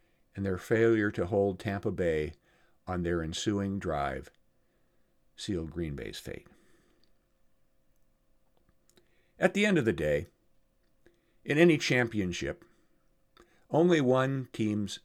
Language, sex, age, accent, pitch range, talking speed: English, male, 50-69, American, 95-125 Hz, 110 wpm